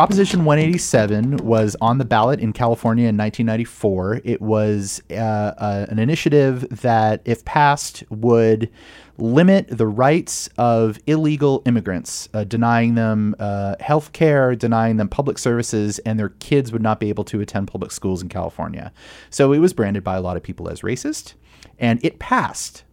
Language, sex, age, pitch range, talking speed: English, male, 30-49, 105-130 Hz, 155 wpm